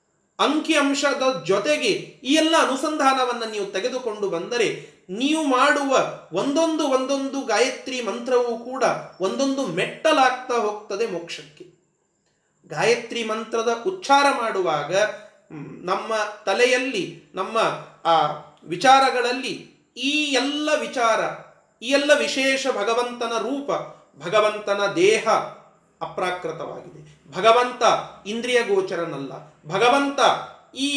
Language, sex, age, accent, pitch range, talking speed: Kannada, male, 30-49, native, 190-270 Hz, 85 wpm